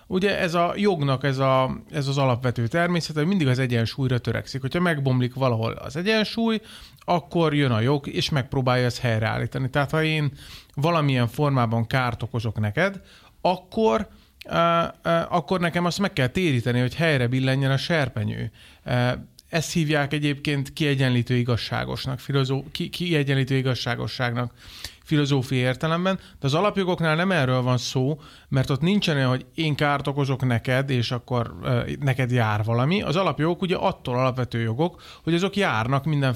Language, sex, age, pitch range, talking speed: Hungarian, male, 30-49, 125-170 Hz, 150 wpm